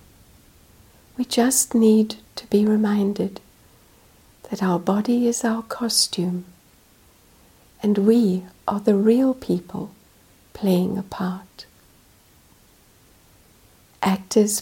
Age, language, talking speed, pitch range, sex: 60-79, English, 90 wpm, 185-225 Hz, female